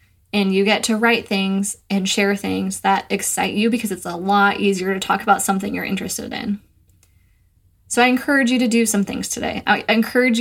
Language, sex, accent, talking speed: English, female, American, 200 wpm